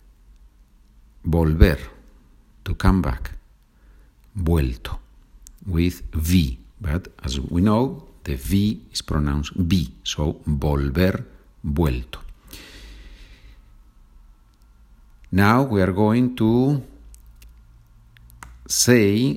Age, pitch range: 50-69, 70-95 Hz